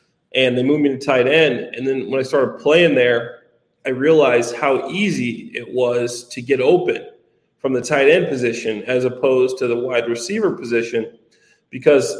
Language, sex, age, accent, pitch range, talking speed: English, male, 30-49, American, 125-165 Hz, 175 wpm